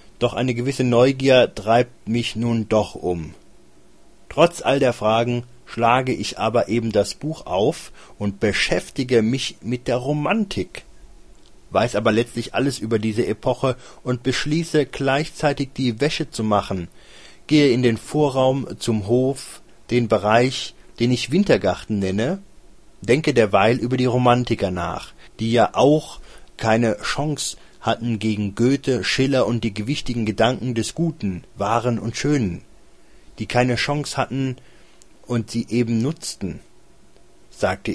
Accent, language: German, German